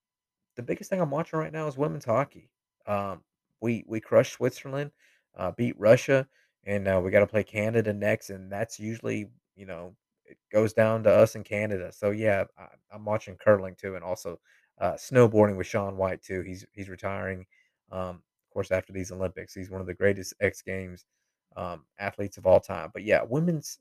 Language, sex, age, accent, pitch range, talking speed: English, male, 30-49, American, 95-115 Hz, 195 wpm